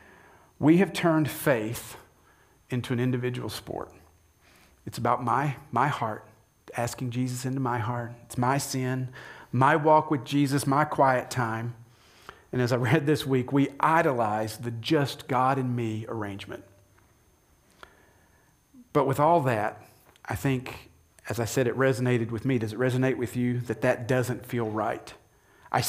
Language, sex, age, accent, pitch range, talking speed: English, male, 40-59, American, 110-135 Hz, 155 wpm